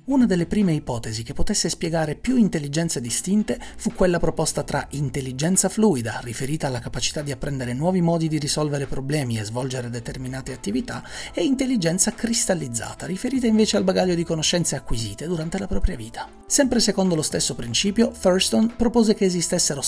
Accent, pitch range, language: native, 130-195 Hz, Italian